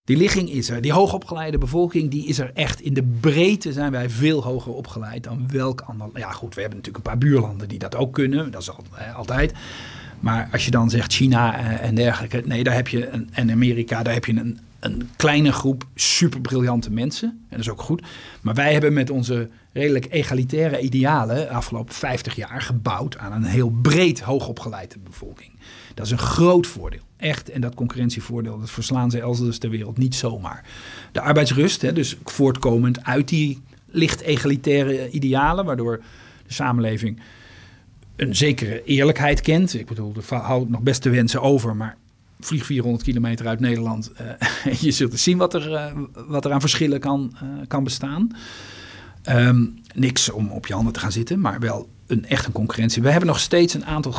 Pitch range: 115-140 Hz